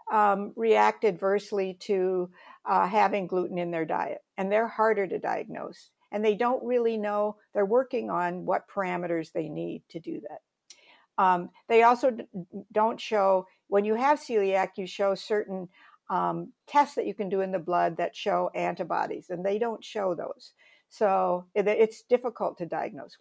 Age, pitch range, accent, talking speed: 60-79, 185-235 Hz, American, 165 wpm